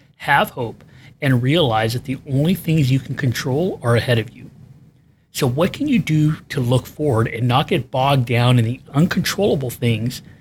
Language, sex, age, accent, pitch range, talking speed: English, male, 40-59, American, 125-155 Hz, 185 wpm